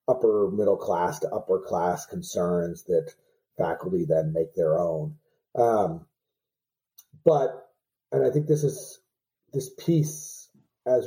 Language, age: English, 30-49